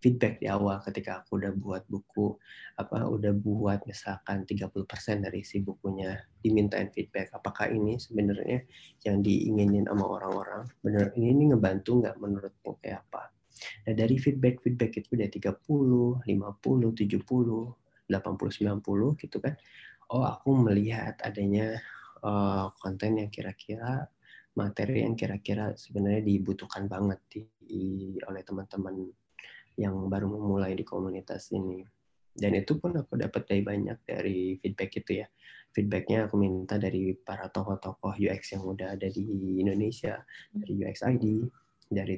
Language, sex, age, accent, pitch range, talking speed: Indonesian, male, 20-39, native, 95-110 Hz, 135 wpm